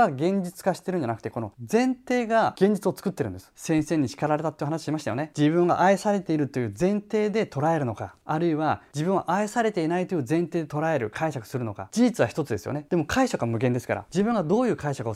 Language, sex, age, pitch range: Japanese, male, 20-39, 125-180 Hz